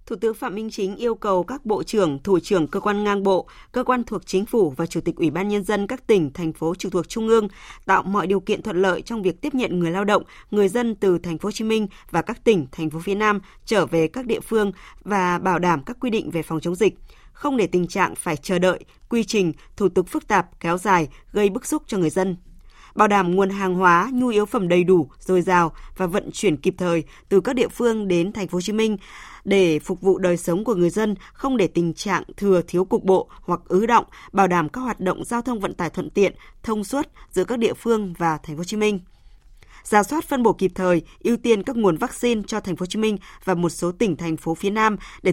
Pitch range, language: 175-220 Hz, Vietnamese